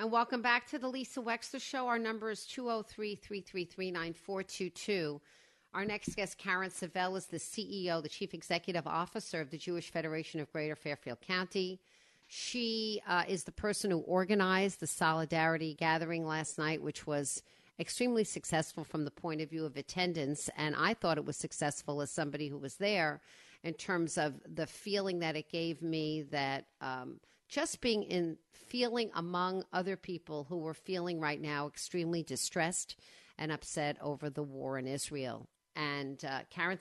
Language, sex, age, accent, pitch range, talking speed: English, female, 50-69, American, 155-190 Hz, 165 wpm